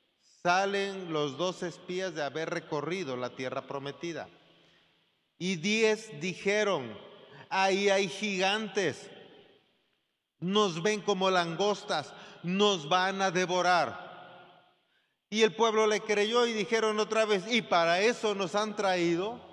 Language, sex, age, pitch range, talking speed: Spanish, male, 40-59, 160-205 Hz, 120 wpm